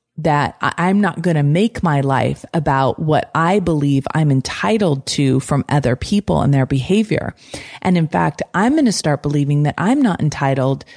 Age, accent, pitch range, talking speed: 30-49, American, 140-190 Hz, 180 wpm